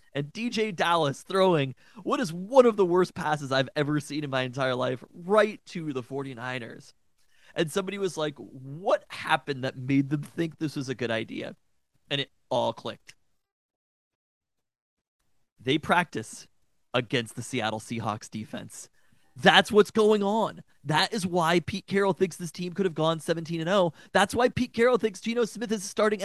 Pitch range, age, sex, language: 145-205 Hz, 30-49, male, English